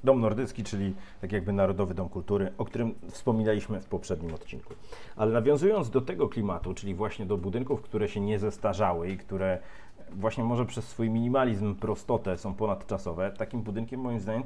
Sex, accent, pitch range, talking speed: male, native, 95-115 Hz, 170 wpm